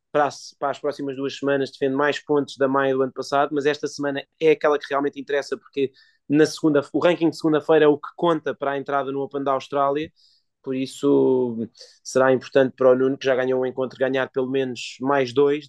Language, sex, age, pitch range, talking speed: Portuguese, male, 20-39, 130-145 Hz, 205 wpm